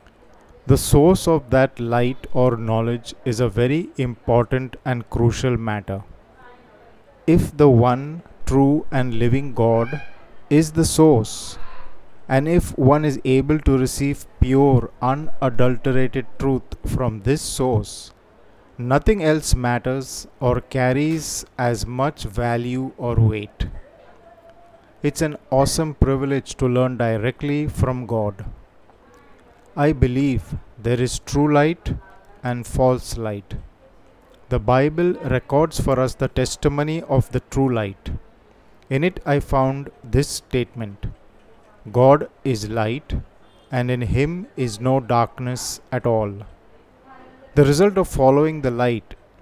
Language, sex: Hindi, male